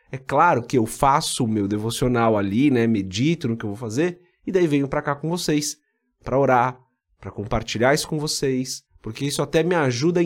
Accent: Brazilian